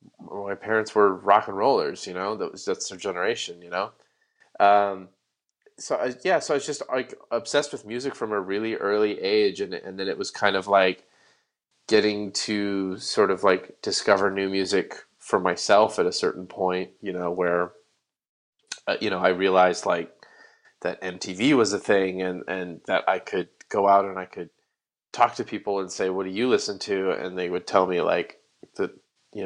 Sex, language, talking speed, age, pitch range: male, English, 195 wpm, 30-49, 95-125 Hz